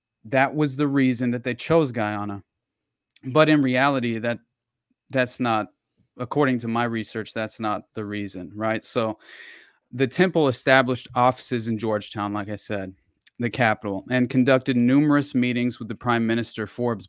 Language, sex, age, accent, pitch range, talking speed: English, male, 30-49, American, 115-135 Hz, 155 wpm